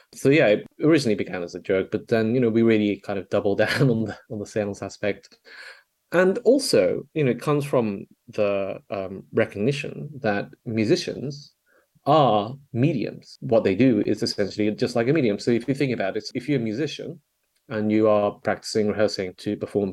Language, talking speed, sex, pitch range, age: English, 195 wpm, male, 105-140 Hz, 30-49